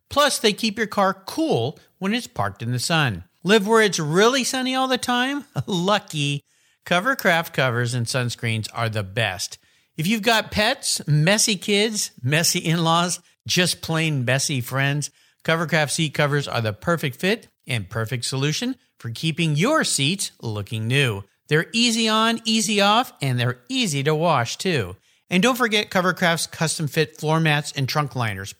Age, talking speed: 50-69, 160 wpm